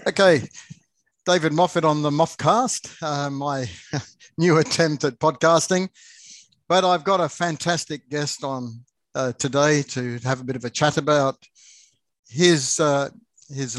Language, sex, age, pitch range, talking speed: English, male, 60-79, 135-155 Hz, 140 wpm